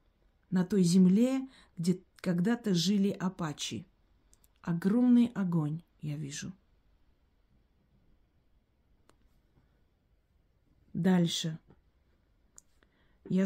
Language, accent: Russian, native